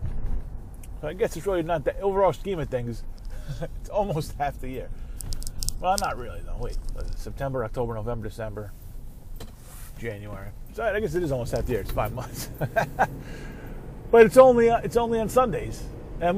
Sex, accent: male, American